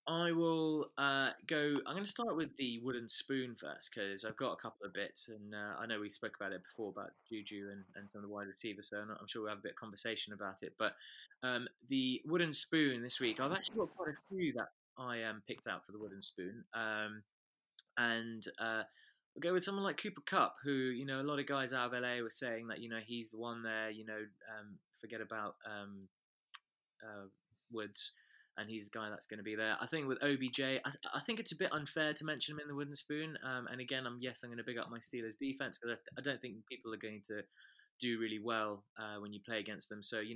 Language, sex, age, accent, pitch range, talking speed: English, male, 20-39, British, 105-135 Hz, 250 wpm